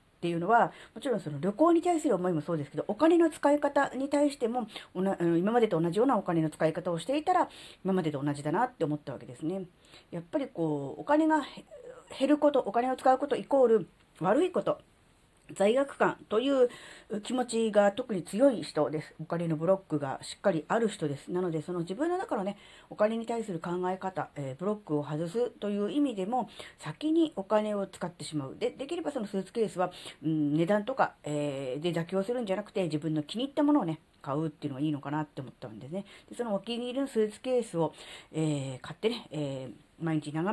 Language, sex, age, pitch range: Japanese, female, 40-59, 155-235 Hz